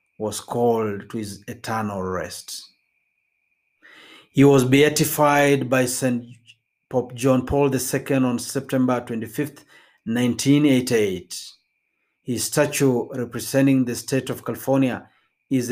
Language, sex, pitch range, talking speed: Swahili, male, 115-135 Hz, 105 wpm